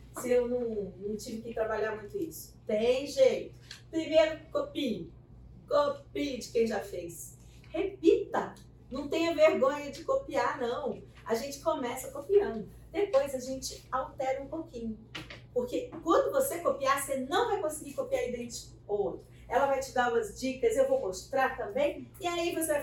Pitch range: 225-345 Hz